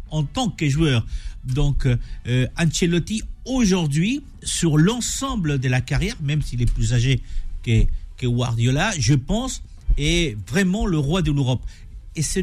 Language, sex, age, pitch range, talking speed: French, male, 50-69, 125-175 Hz, 150 wpm